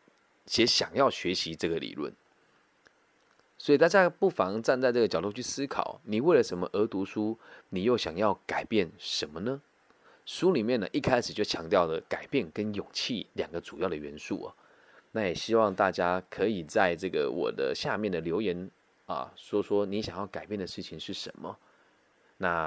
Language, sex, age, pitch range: Chinese, male, 20-39, 85-135 Hz